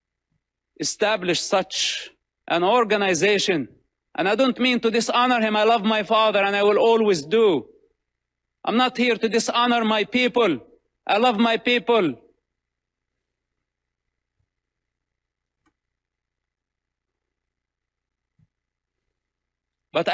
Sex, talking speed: male, 95 wpm